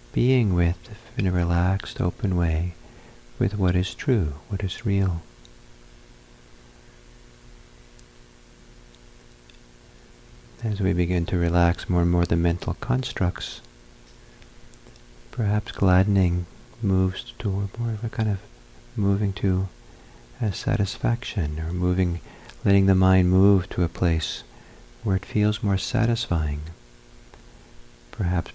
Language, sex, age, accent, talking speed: English, male, 50-69, American, 110 wpm